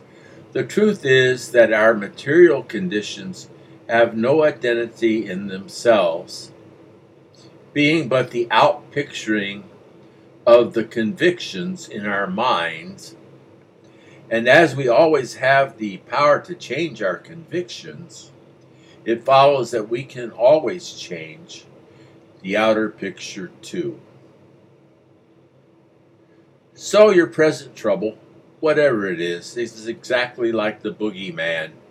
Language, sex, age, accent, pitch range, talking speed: English, male, 60-79, American, 110-160 Hz, 105 wpm